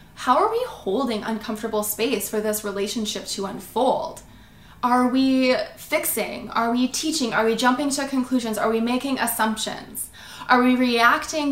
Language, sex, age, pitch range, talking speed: English, female, 20-39, 210-260 Hz, 150 wpm